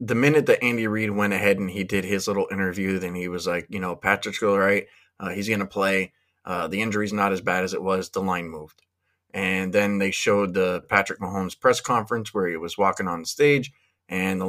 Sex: male